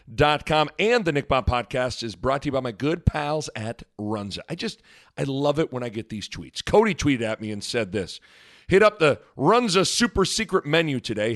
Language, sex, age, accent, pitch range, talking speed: English, male, 40-59, American, 110-165 Hz, 210 wpm